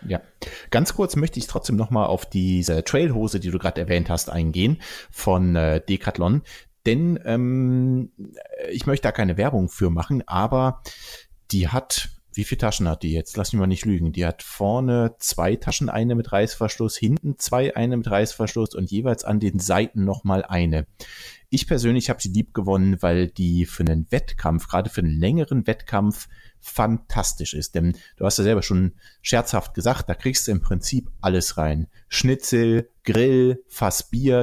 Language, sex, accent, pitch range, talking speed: German, male, German, 90-125 Hz, 175 wpm